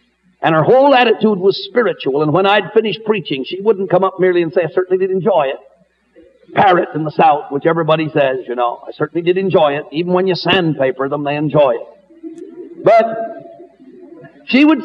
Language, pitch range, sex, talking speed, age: English, 150-215 Hz, male, 195 wpm, 50-69